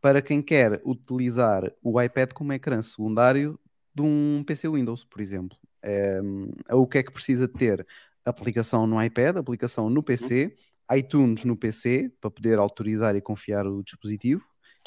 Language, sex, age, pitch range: Portuguese, male, 20-39, 115-140 Hz